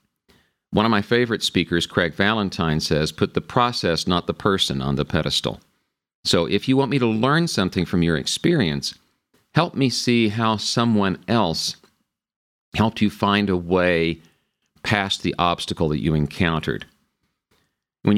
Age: 50-69